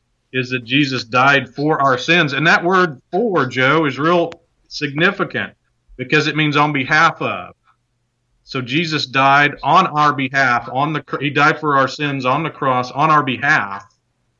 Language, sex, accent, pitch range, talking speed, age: English, male, American, 120-150 Hz, 165 wpm, 40-59